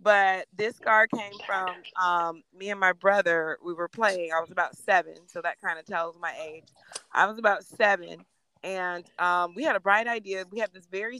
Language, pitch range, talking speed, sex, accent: English, 175-225 Hz, 210 wpm, female, American